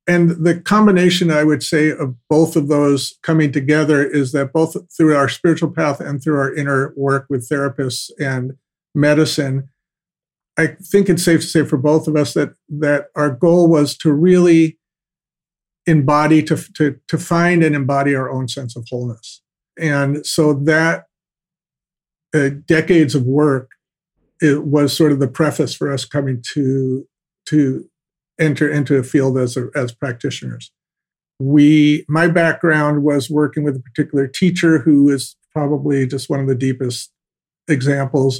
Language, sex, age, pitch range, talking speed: English, male, 50-69, 135-155 Hz, 160 wpm